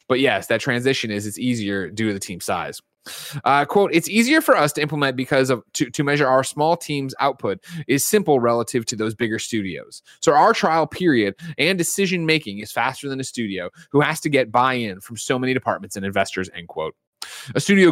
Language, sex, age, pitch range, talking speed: English, male, 20-39, 110-150 Hz, 210 wpm